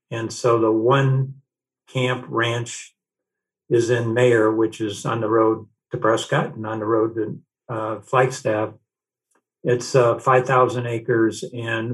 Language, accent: English, American